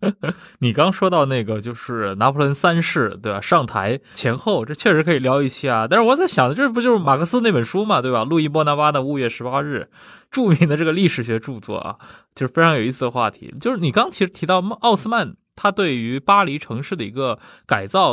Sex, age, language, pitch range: male, 20-39, Chinese, 130-185 Hz